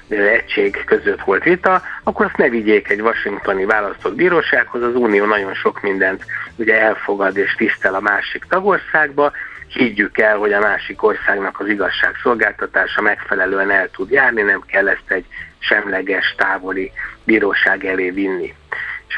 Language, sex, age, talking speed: Hungarian, male, 60-79, 145 wpm